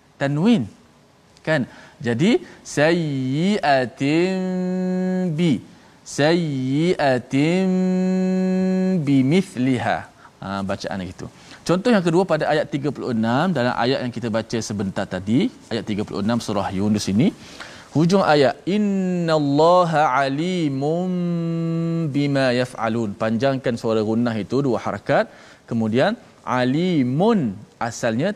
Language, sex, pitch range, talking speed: Malayalam, male, 110-165 Hz, 95 wpm